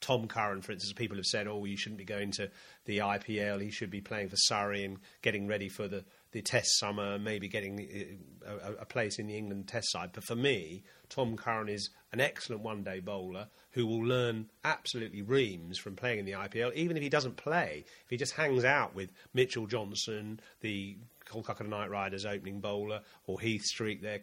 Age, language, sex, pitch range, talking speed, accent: 40-59, English, male, 105-125 Hz, 205 wpm, British